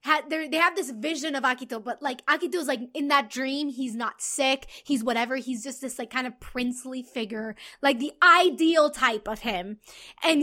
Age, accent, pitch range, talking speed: 20-39, American, 270-375 Hz, 190 wpm